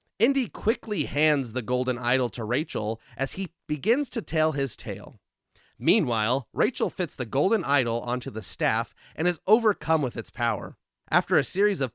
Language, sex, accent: English, male, American